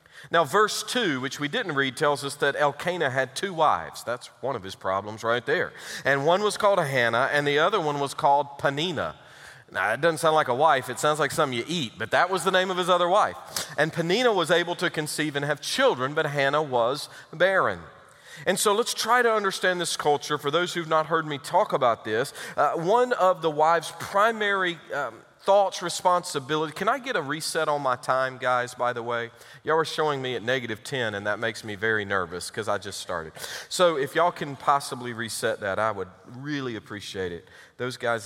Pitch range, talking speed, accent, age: 130-180 Hz, 215 wpm, American, 40-59